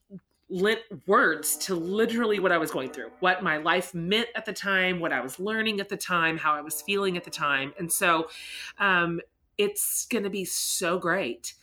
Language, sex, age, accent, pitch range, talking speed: English, female, 30-49, American, 160-200 Hz, 200 wpm